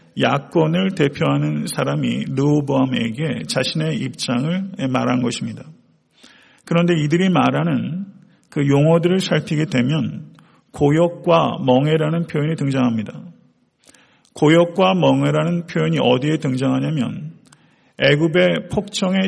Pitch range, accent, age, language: 130-170 Hz, native, 40-59, Korean